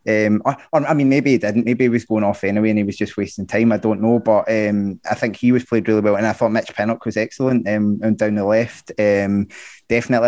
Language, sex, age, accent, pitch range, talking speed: English, male, 20-39, British, 105-125 Hz, 270 wpm